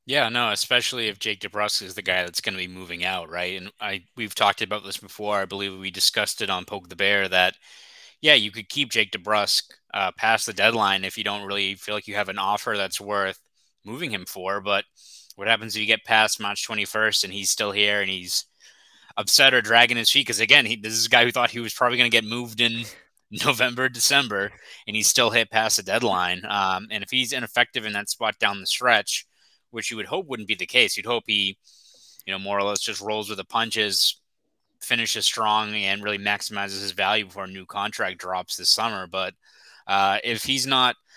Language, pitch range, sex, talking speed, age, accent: English, 100-115 Hz, male, 225 wpm, 20-39, American